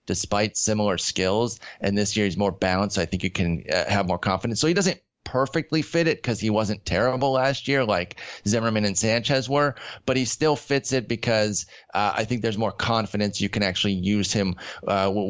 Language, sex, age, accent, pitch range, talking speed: English, male, 30-49, American, 100-120 Hz, 210 wpm